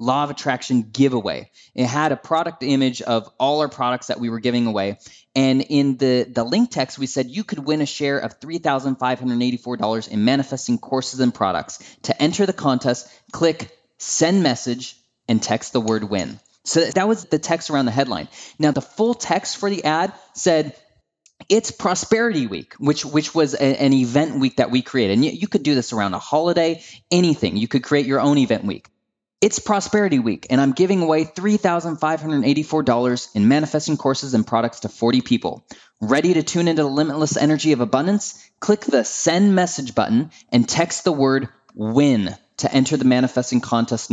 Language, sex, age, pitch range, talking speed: English, male, 20-39, 120-155 Hz, 185 wpm